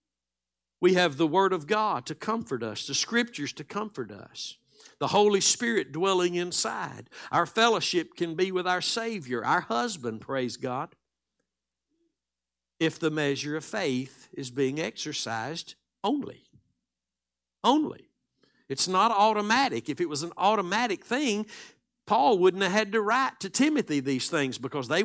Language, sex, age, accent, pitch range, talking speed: English, male, 60-79, American, 155-240 Hz, 145 wpm